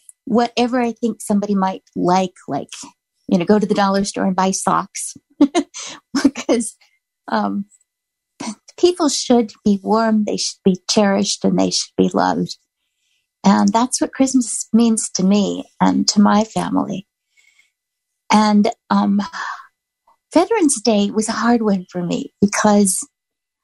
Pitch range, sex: 190-240 Hz, female